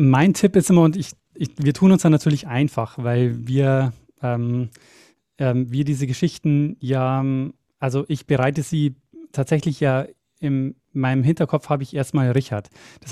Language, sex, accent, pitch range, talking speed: German, male, German, 135-160 Hz, 160 wpm